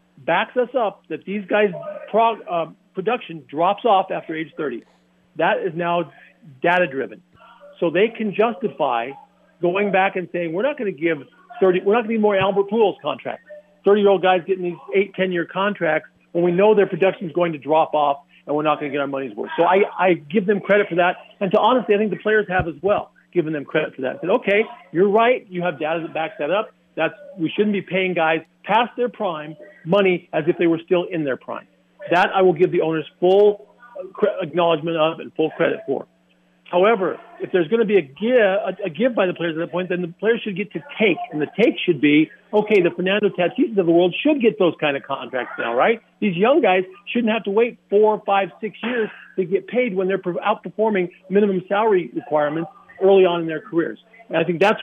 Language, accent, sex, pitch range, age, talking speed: English, American, male, 165-210 Hz, 50-69, 230 wpm